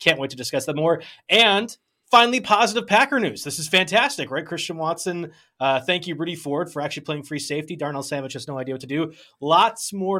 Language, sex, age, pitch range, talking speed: English, male, 20-39, 125-160 Hz, 220 wpm